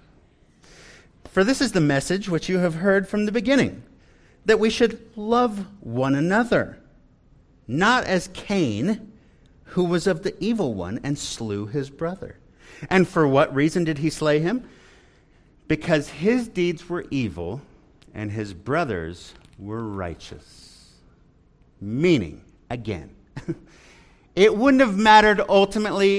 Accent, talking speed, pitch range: American, 130 wpm, 155-225 Hz